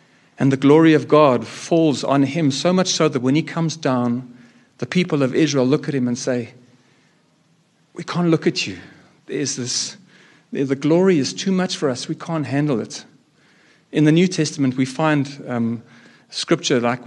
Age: 50-69